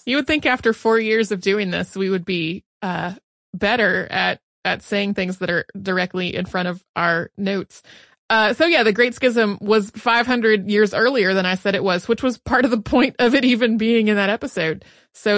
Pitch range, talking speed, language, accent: 195-255 Hz, 215 wpm, English, American